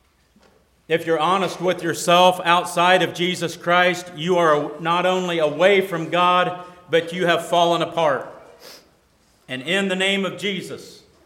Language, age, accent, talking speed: English, 50-69, American, 145 wpm